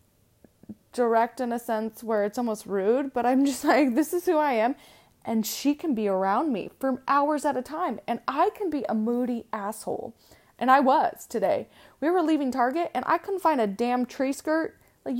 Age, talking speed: 20-39, 205 wpm